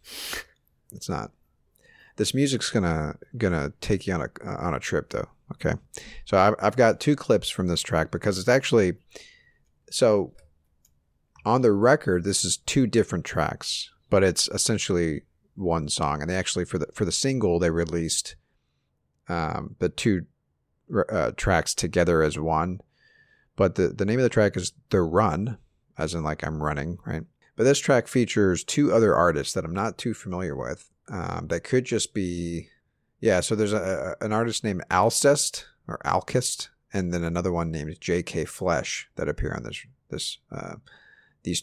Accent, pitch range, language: American, 85-110 Hz, English